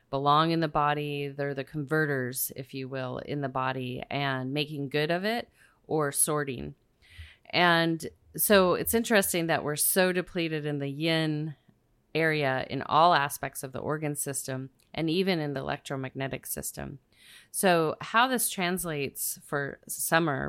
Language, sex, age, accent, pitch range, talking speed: English, female, 30-49, American, 140-165 Hz, 150 wpm